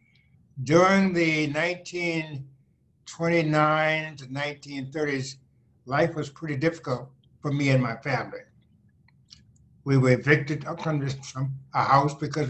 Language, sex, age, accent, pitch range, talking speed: English, male, 60-79, American, 140-175 Hz, 100 wpm